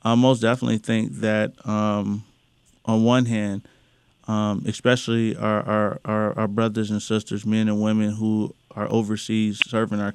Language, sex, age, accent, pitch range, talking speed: English, male, 20-39, American, 105-120 Hz, 140 wpm